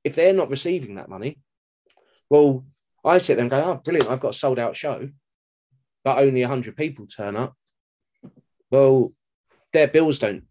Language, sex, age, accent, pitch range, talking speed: English, male, 20-39, British, 105-130 Hz, 165 wpm